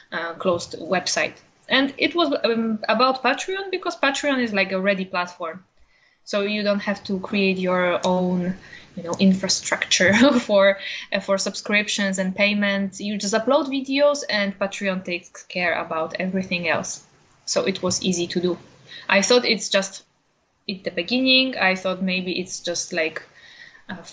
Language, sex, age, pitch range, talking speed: English, female, 20-39, 190-235 Hz, 160 wpm